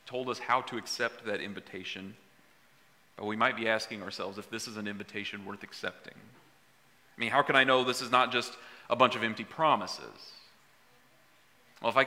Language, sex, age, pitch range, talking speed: English, male, 30-49, 105-125 Hz, 190 wpm